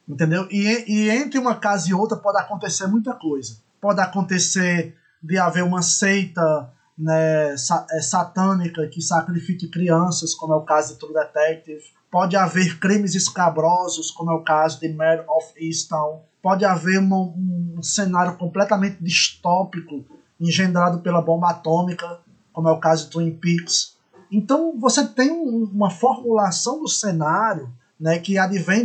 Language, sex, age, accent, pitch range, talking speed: Portuguese, male, 20-39, Brazilian, 165-200 Hz, 150 wpm